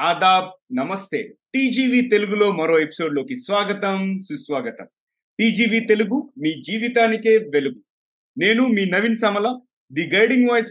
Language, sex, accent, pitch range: Telugu, male, native, 160-225 Hz